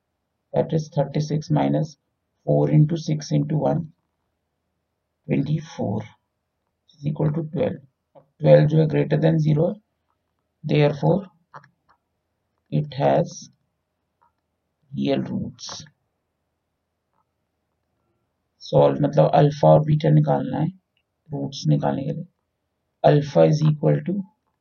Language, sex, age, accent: Hindi, male, 50-69, native